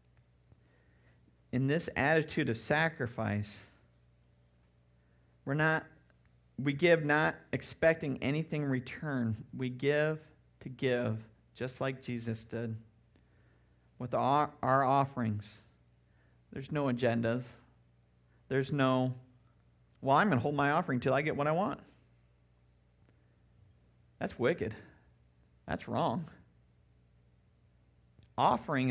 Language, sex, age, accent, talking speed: English, male, 40-59, American, 100 wpm